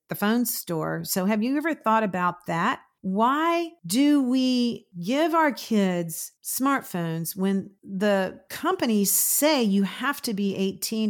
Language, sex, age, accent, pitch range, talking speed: English, female, 50-69, American, 175-235 Hz, 140 wpm